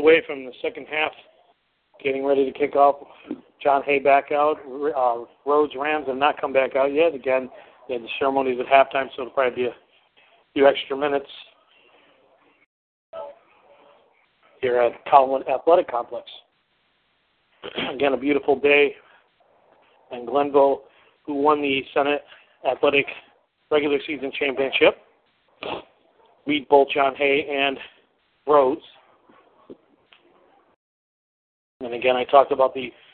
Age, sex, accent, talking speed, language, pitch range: 40-59, male, American, 125 wpm, English, 130-150 Hz